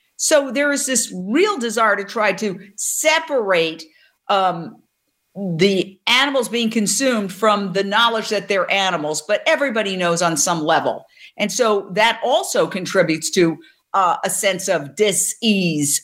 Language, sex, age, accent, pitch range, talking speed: English, female, 50-69, American, 185-240 Hz, 140 wpm